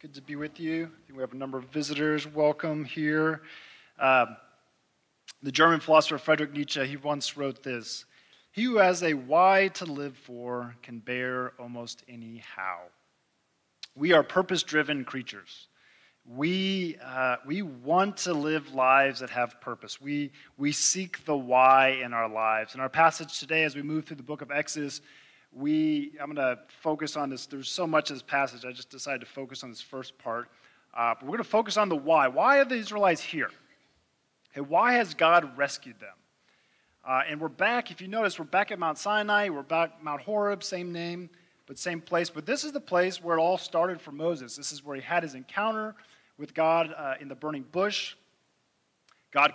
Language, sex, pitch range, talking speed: English, male, 135-175 Hz, 195 wpm